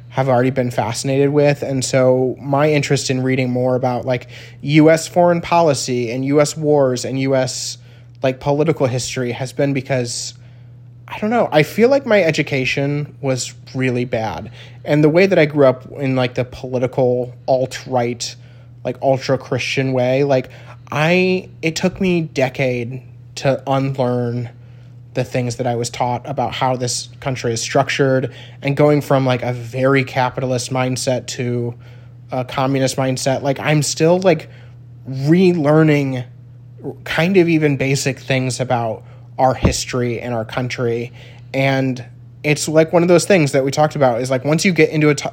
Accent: American